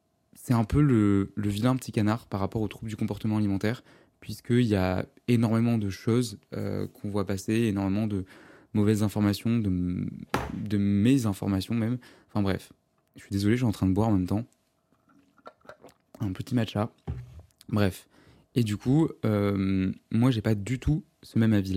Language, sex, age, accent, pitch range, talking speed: French, male, 20-39, French, 100-120 Hz, 175 wpm